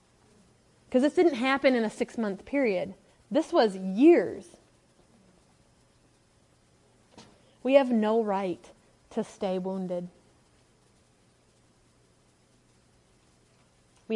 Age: 30-49